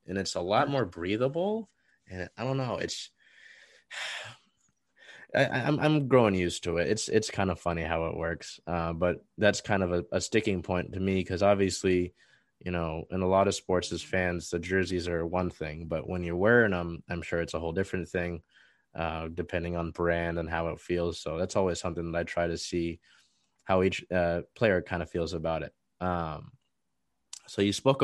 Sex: male